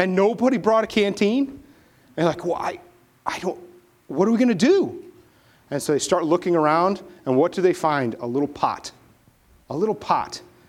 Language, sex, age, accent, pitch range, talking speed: English, male, 30-49, American, 140-230 Hz, 195 wpm